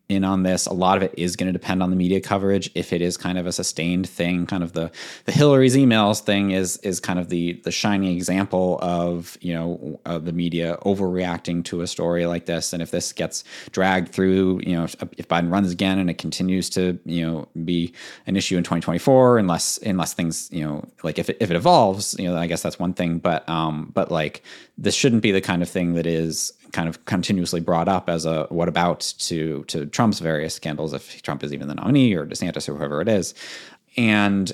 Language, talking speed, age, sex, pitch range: English, 230 wpm, 30-49, male, 85-100 Hz